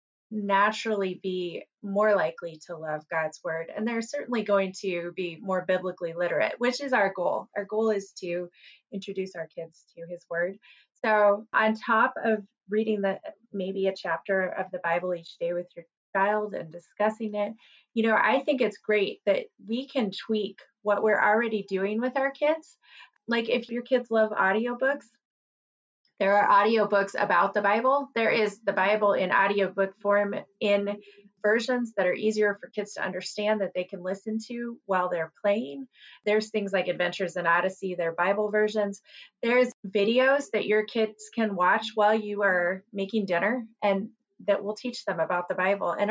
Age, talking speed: 20-39, 175 wpm